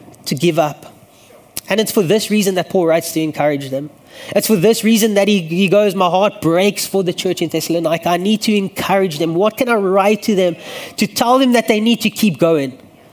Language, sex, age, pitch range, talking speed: English, male, 20-39, 180-225 Hz, 230 wpm